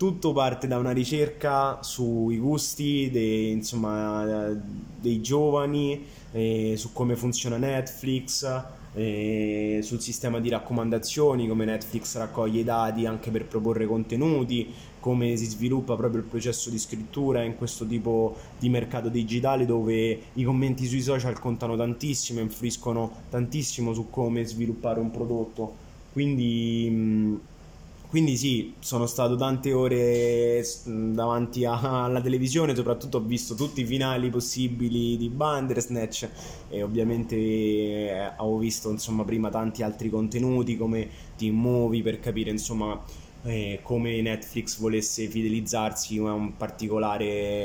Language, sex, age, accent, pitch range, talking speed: Italian, male, 20-39, native, 110-125 Hz, 130 wpm